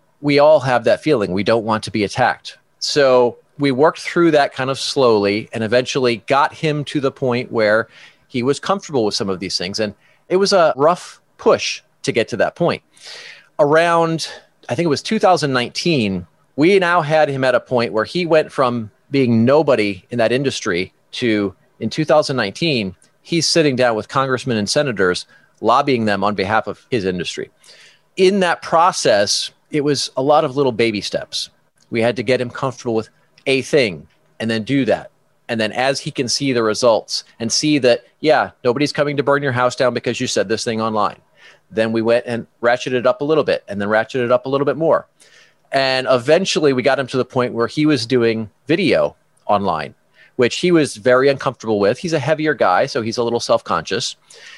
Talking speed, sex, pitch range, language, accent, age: 200 wpm, male, 115-145 Hz, English, American, 40-59